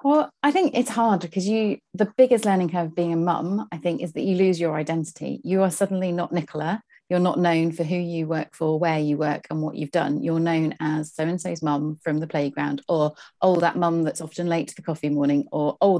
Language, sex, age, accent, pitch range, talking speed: English, female, 30-49, British, 155-185 Hz, 240 wpm